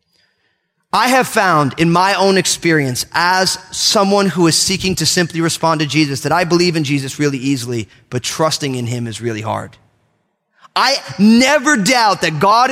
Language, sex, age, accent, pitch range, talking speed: English, male, 30-49, American, 150-225 Hz, 170 wpm